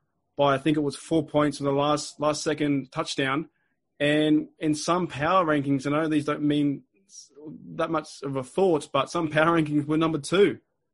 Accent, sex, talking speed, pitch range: Australian, male, 195 wpm, 140-160 Hz